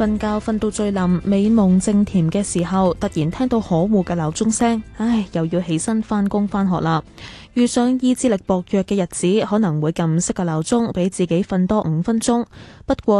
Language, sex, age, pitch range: Chinese, female, 10-29, 175-225 Hz